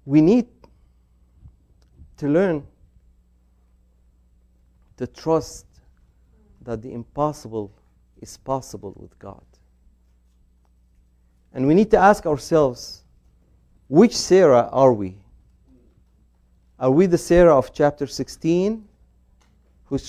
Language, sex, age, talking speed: English, male, 50-69, 95 wpm